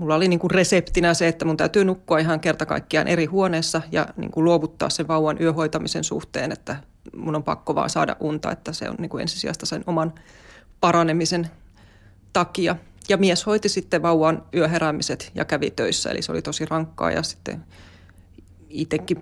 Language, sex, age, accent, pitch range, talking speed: Finnish, female, 20-39, native, 155-175 Hz, 170 wpm